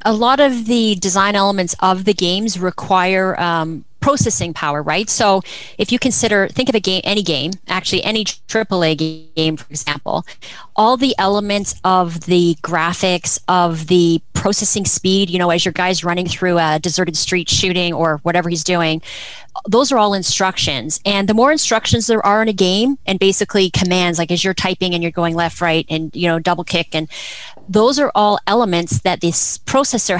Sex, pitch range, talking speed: female, 180-215 Hz, 185 wpm